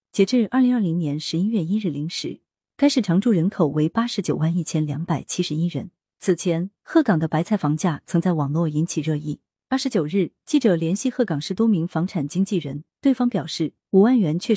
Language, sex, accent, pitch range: Chinese, female, native, 155-205 Hz